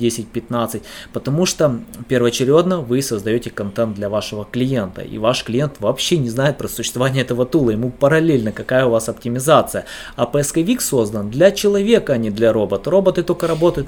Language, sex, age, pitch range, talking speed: Russian, male, 20-39, 110-135 Hz, 160 wpm